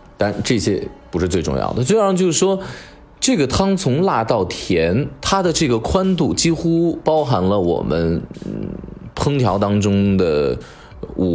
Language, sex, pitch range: Chinese, male, 90-150 Hz